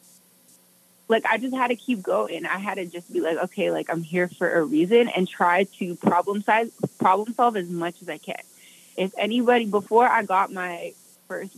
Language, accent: English, American